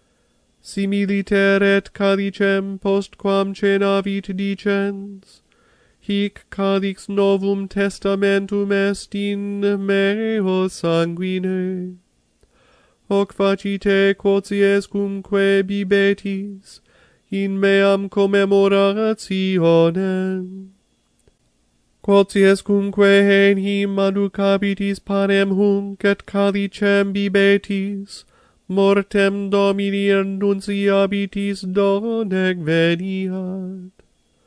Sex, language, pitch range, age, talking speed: male, English, 195-200 Hz, 30-49, 65 wpm